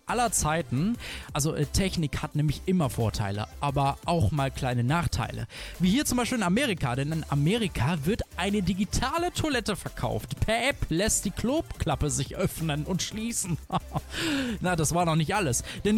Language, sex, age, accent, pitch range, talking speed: German, male, 20-39, German, 145-210 Hz, 160 wpm